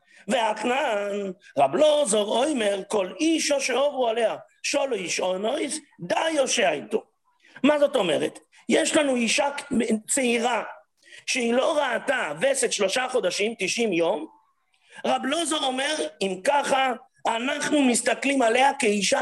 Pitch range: 220-285 Hz